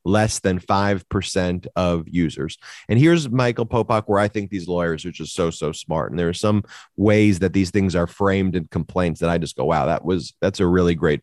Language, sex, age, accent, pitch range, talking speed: English, male, 30-49, American, 95-110 Hz, 230 wpm